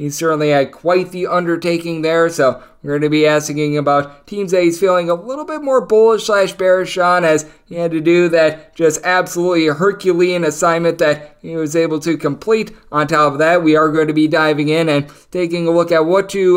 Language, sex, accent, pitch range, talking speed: English, male, American, 150-185 Hz, 215 wpm